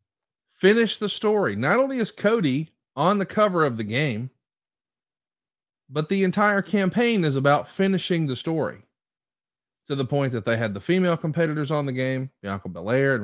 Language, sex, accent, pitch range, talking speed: English, male, American, 130-190 Hz, 170 wpm